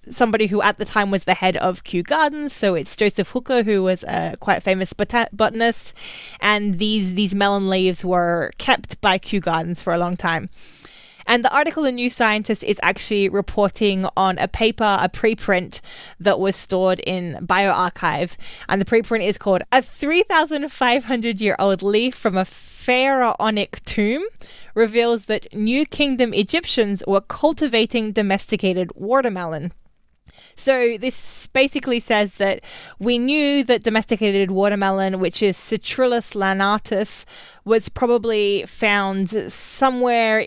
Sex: female